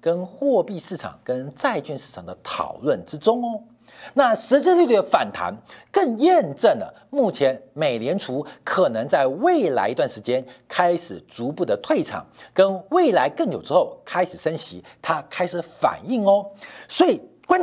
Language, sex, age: Chinese, male, 50-69